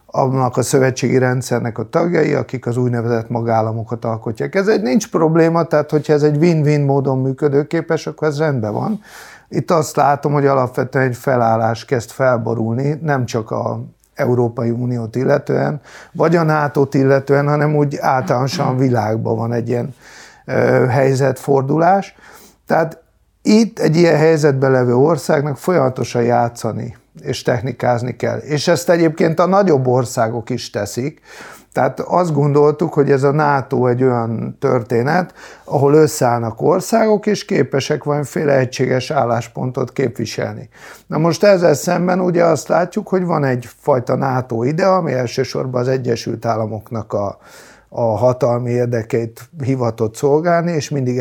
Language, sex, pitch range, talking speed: English, male, 120-155 Hz, 140 wpm